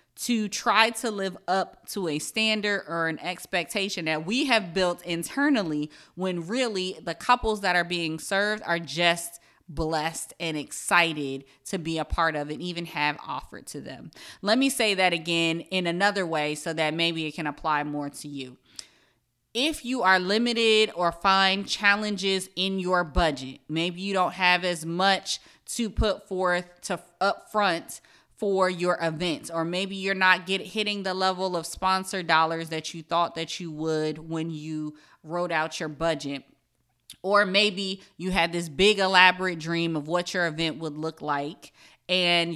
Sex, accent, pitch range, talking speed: female, American, 165-195 Hz, 170 wpm